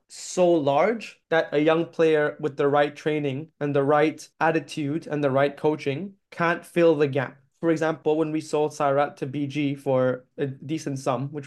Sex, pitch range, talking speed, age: male, 135-155 Hz, 185 wpm, 20-39